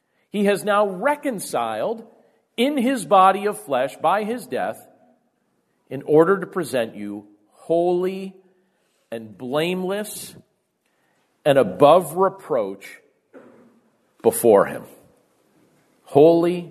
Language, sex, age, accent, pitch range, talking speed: English, male, 50-69, American, 120-190 Hz, 95 wpm